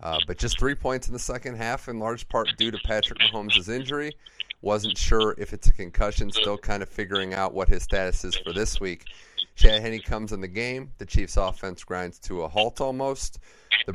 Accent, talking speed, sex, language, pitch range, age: American, 215 wpm, male, English, 90-110 Hz, 30-49